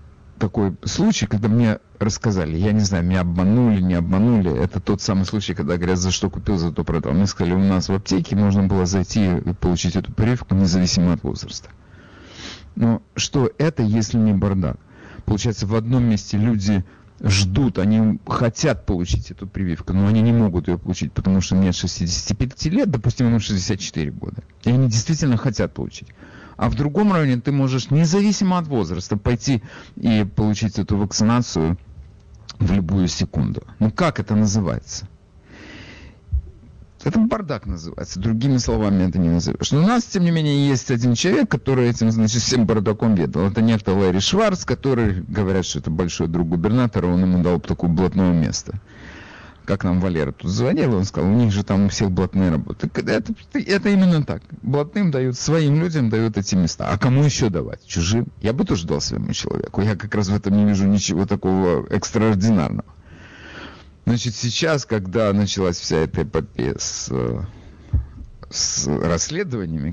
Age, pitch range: 50-69, 90-115 Hz